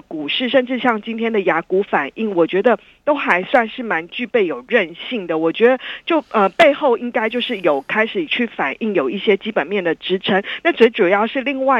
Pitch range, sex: 190-250 Hz, female